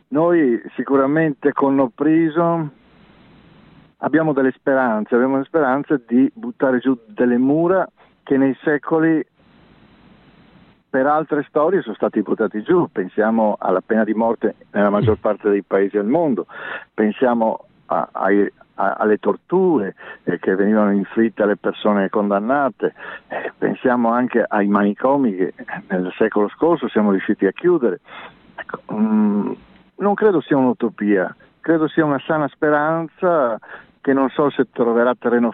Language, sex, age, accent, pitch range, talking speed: Italian, male, 50-69, native, 110-145 Hz, 135 wpm